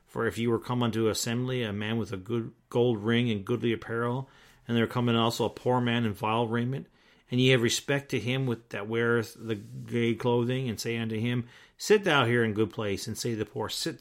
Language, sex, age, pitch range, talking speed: English, male, 40-59, 115-150 Hz, 240 wpm